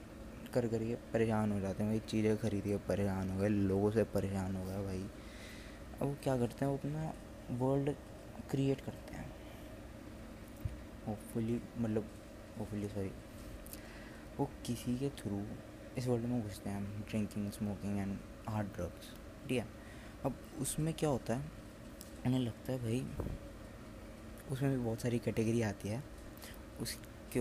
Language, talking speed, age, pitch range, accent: Hindi, 145 wpm, 20-39, 105-130 Hz, native